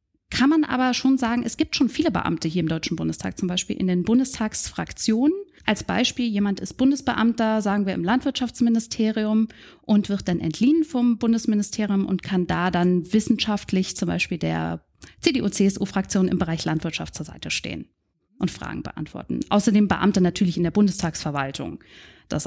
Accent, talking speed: German, 160 wpm